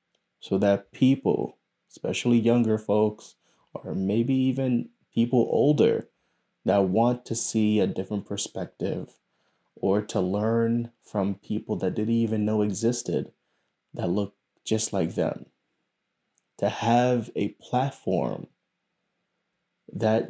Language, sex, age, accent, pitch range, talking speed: English, male, 20-39, American, 100-120 Hz, 110 wpm